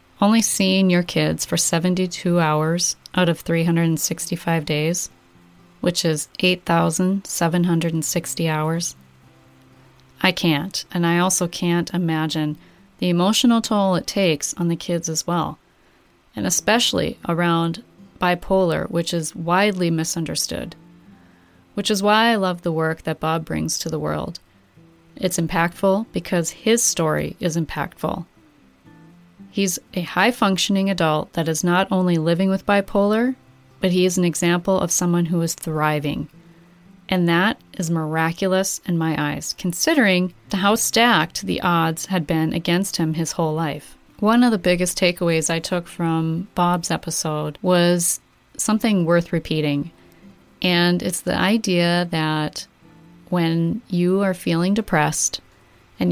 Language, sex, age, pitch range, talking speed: English, female, 30-49, 160-185 Hz, 135 wpm